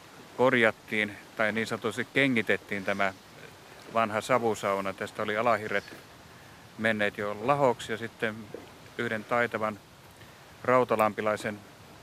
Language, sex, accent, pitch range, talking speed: Finnish, male, native, 105-120 Hz, 95 wpm